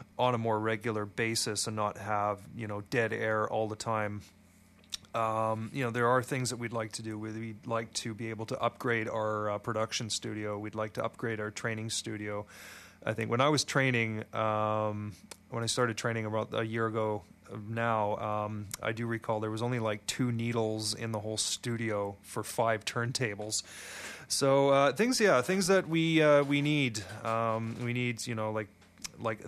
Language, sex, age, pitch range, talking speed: English, male, 30-49, 110-125 Hz, 190 wpm